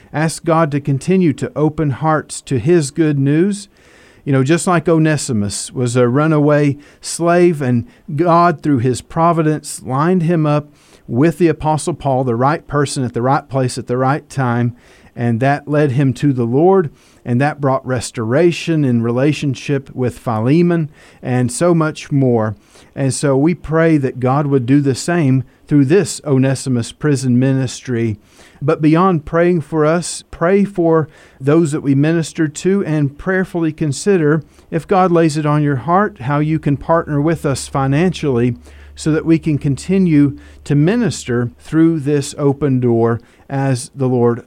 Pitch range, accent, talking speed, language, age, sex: 130-165 Hz, American, 160 wpm, English, 50-69, male